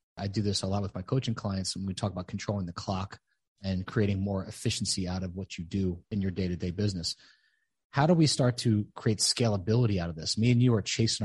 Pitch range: 95-115 Hz